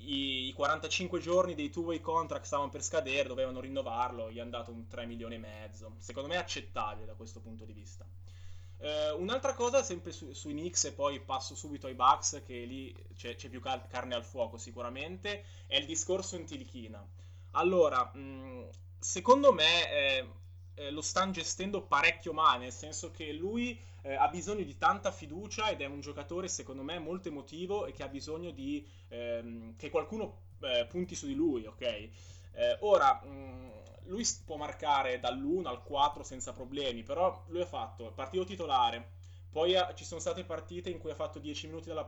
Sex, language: male, Italian